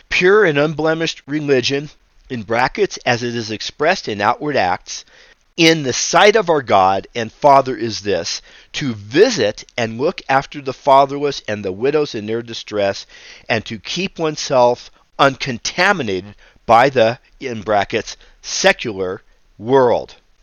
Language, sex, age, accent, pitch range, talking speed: English, male, 50-69, American, 115-160 Hz, 140 wpm